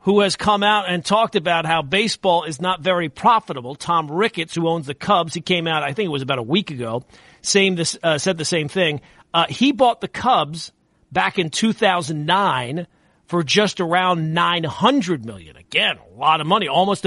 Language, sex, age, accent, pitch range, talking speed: English, male, 40-59, American, 165-215 Hz, 195 wpm